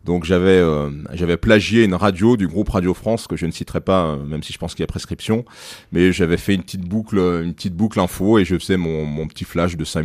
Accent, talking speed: French, 255 wpm